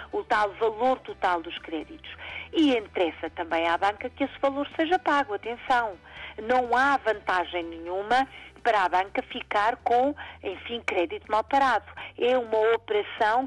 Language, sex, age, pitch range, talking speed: Portuguese, female, 50-69, 195-260 Hz, 145 wpm